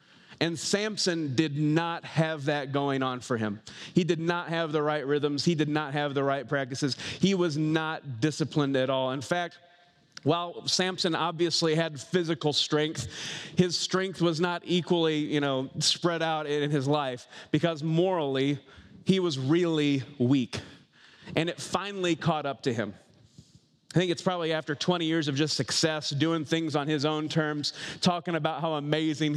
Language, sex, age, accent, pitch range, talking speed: English, male, 30-49, American, 145-170 Hz, 170 wpm